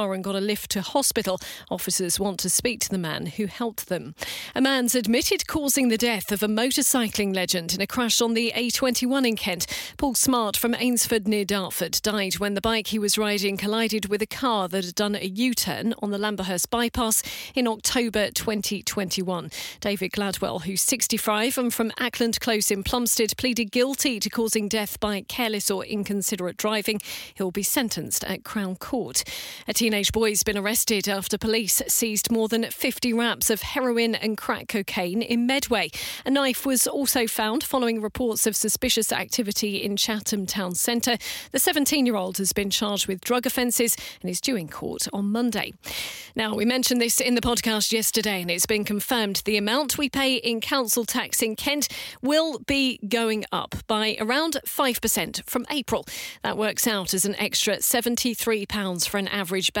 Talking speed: 180 wpm